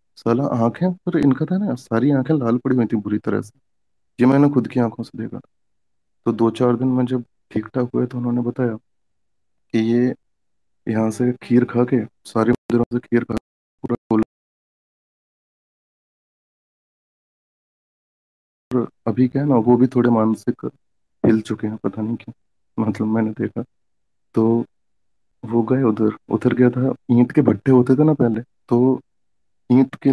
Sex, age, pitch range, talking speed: male, 30-49, 110-125 Hz, 120 wpm